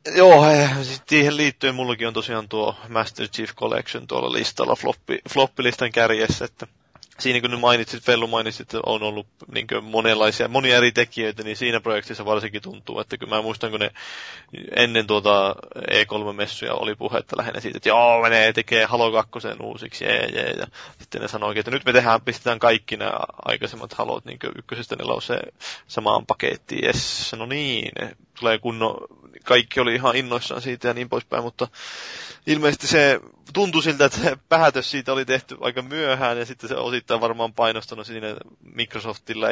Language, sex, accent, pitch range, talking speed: Finnish, male, native, 110-135 Hz, 165 wpm